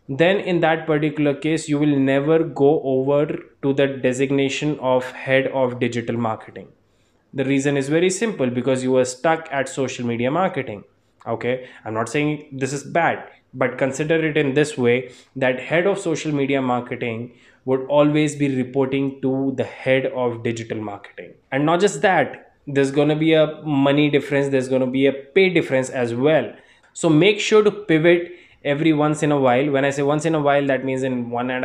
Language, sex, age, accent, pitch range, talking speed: English, male, 20-39, Indian, 130-155 Hz, 195 wpm